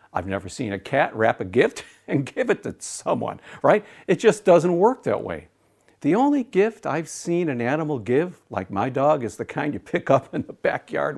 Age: 60-79